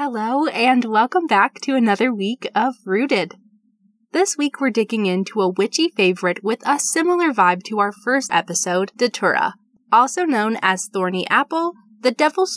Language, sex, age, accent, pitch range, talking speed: English, female, 20-39, American, 195-285 Hz, 160 wpm